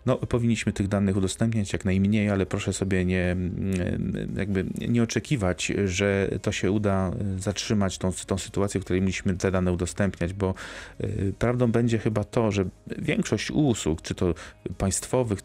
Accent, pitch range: native, 90-105 Hz